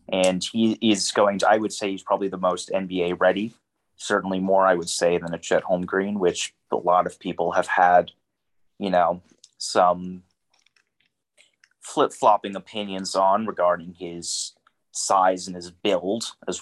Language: English